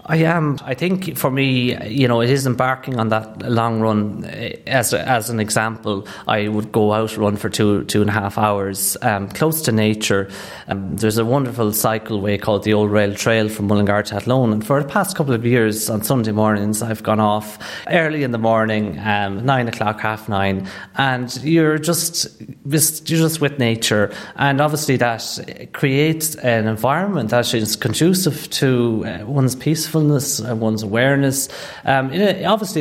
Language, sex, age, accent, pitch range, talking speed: English, male, 30-49, Irish, 110-140 Hz, 175 wpm